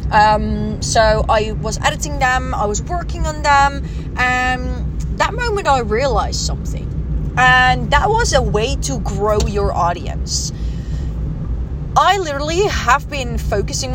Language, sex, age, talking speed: Dutch, female, 20-39, 135 wpm